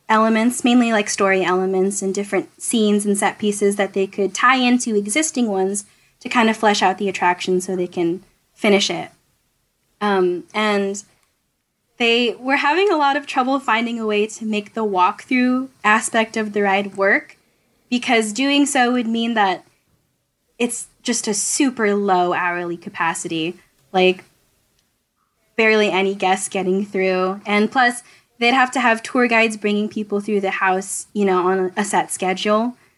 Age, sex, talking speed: 10-29, female, 160 wpm